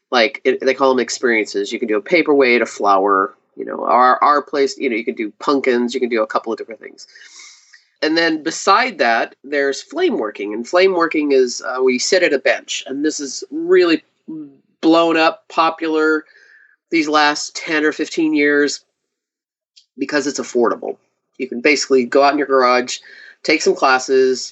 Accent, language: American, English